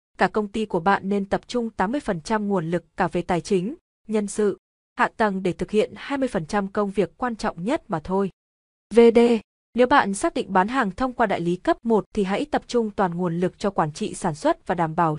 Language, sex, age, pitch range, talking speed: Vietnamese, female, 20-39, 185-235 Hz, 230 wpm